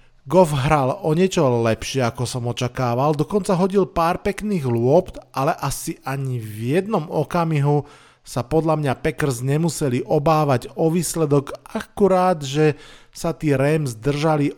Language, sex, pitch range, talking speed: Slovak, male, 130-155 Hz, 135 wpm